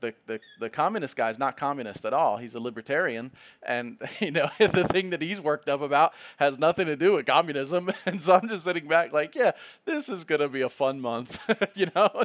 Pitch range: 125-155 Hz